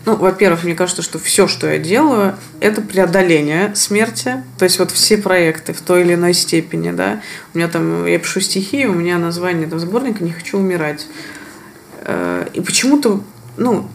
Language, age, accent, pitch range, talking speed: Russian, 20-39, native, 160-200 Hz, 170 wpm